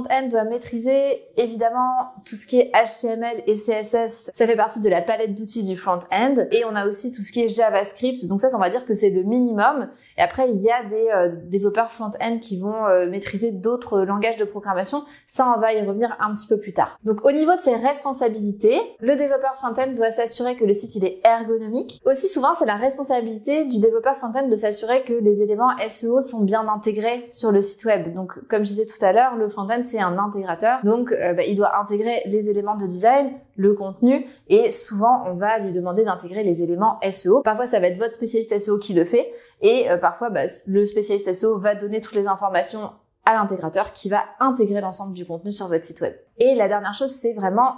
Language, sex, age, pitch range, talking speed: French, female, 20-39, 205-245 Hz, 230 wpm